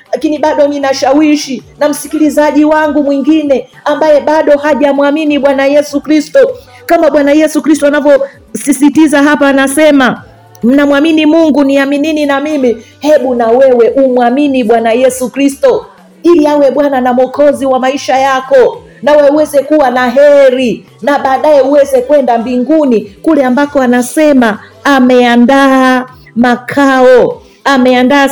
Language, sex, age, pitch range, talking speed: Swahili, female, 40-59, 255-295 Hz, 125 wpm